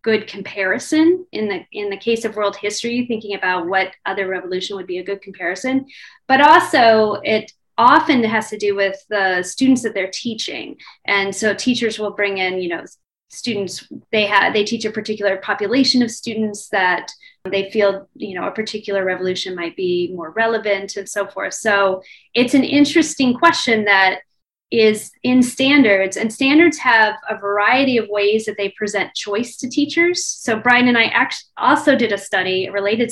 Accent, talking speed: American, 180 wpm